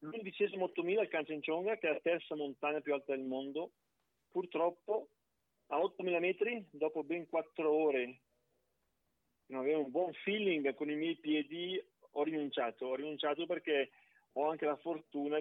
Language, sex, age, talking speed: Italian, male, 40-59, 150 wpm